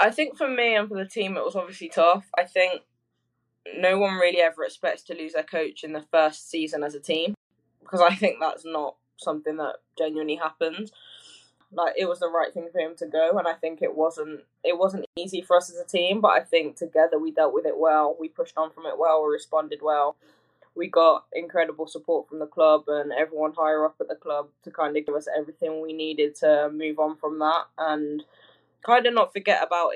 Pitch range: 150-170 Hz